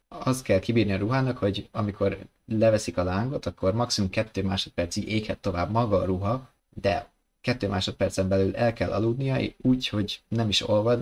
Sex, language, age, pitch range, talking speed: male, Hungarian, 20-39, 95-110 Hz, 175 wpm